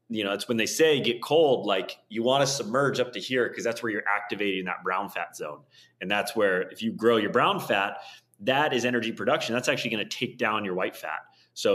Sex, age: male, 30-49